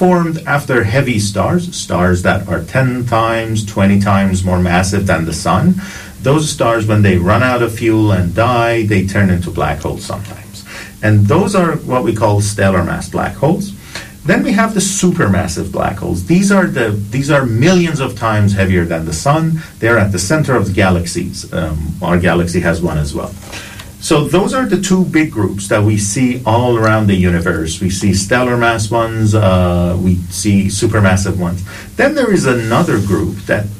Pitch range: 95-140 Hz